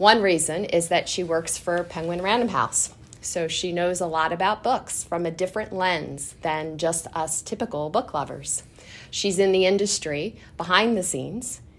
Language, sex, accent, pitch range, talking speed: English, female, American, 155-190 Hz, 175 wpm